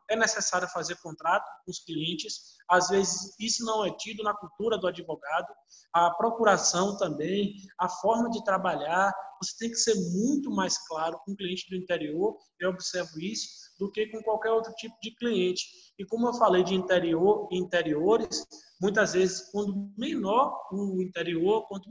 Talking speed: 170 wpm